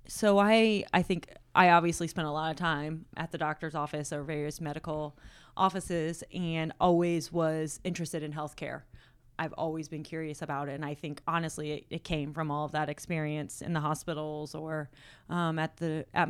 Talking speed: 190 wpm